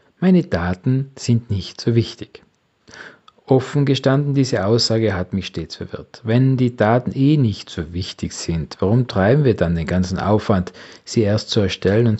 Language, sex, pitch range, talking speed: German, male, 90-120 Hz, 165 wpm